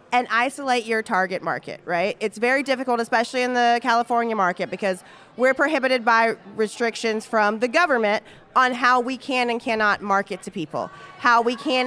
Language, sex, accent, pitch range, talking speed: English, female, American, 215-260 Hz, 170 wpm